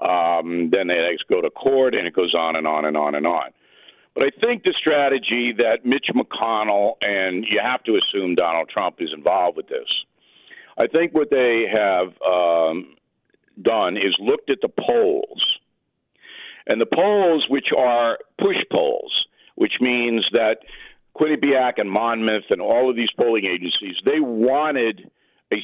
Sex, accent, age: male, American, 50-69